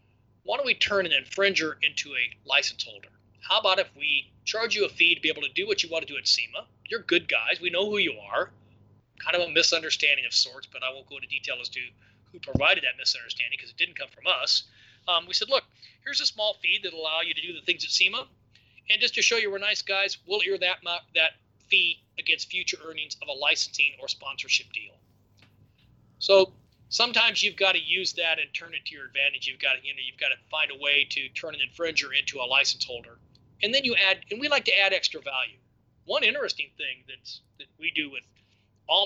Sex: male